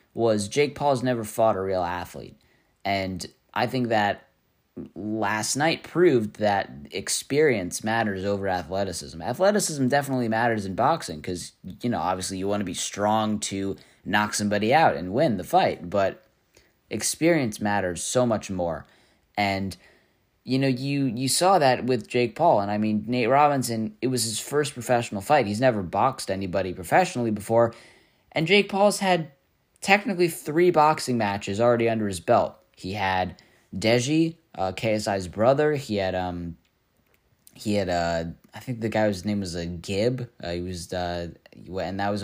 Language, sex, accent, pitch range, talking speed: English, male, American, 95-130 Hz, 165 wpm